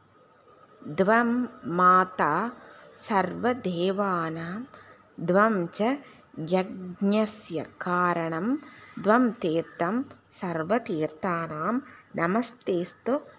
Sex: female